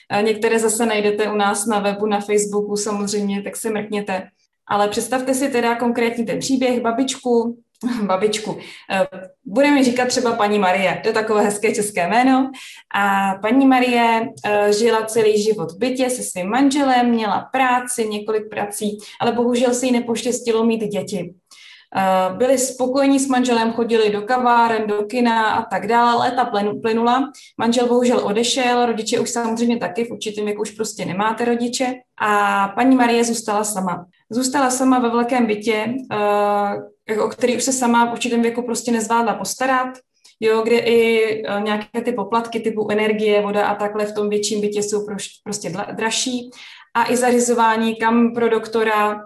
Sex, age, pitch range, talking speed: female, 20-39, 205-240 Hz, 155 wpm